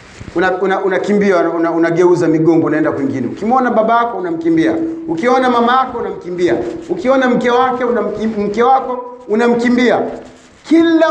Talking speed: 130 wpm